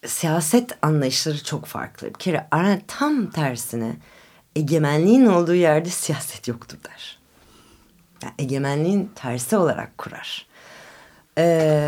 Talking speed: 95 wpm